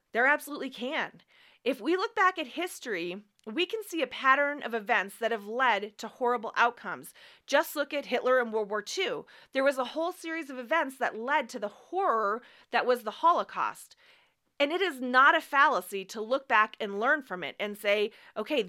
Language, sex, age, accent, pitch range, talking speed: English, female, 30-49, American, 200-285 Hz, 200 wpm